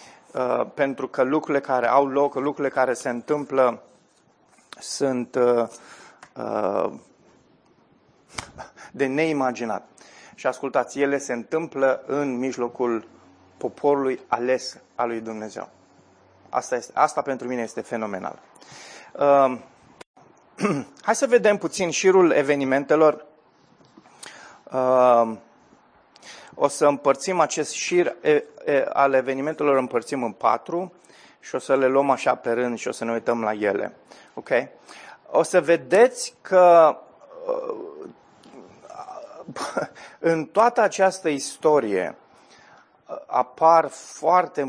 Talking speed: 95 wpm